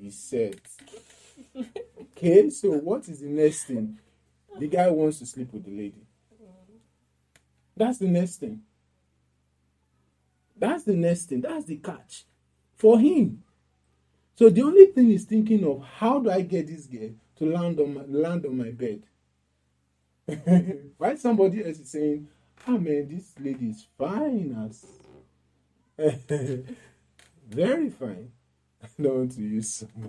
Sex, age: male, 40-59